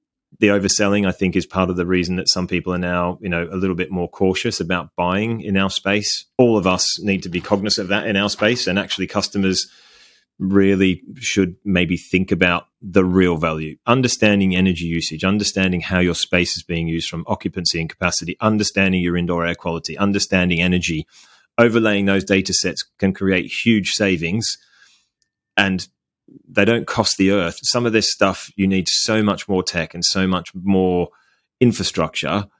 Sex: male